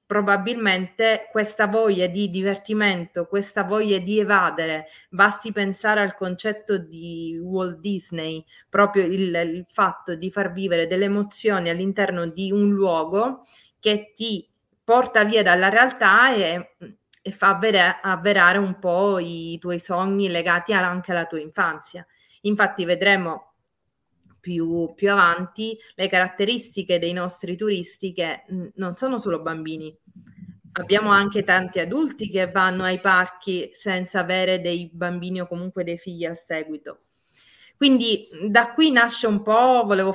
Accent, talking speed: native, 135 wpm